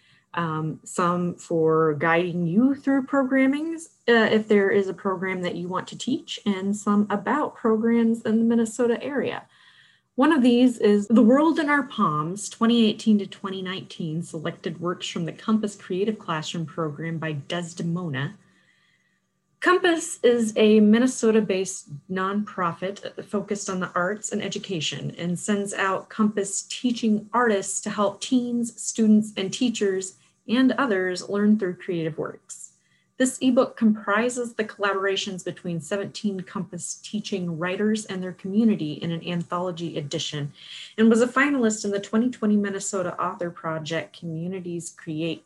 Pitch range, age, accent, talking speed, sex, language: 175-225 Hz, 30-49, American, 140 wpm, female, English